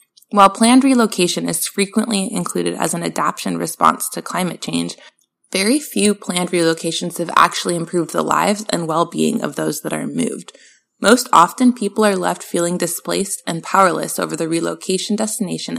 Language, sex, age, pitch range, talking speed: English, female, 20-39, 160-210 Hz, 160 wpm